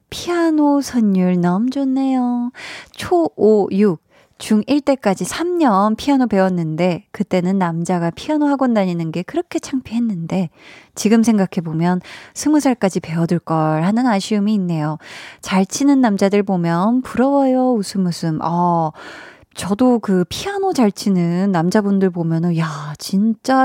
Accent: native